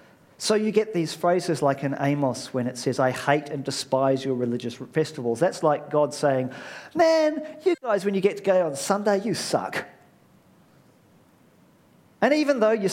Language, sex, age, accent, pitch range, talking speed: English, male, 40-59, British, 135-195 Hz, 175 wpm